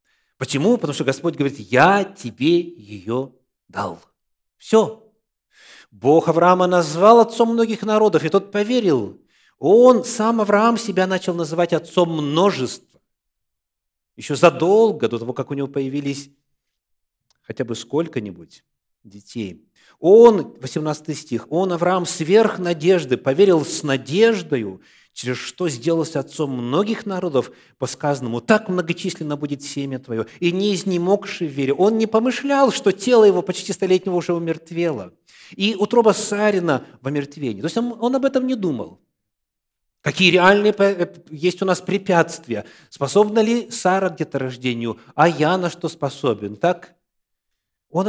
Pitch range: 140-205 Hz